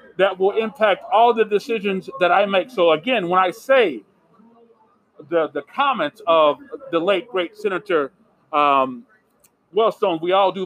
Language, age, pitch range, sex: English, 40-59, 165-230 Hz, male